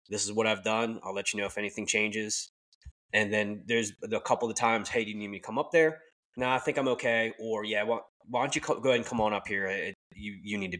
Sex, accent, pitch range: male, American, 100-120 Hz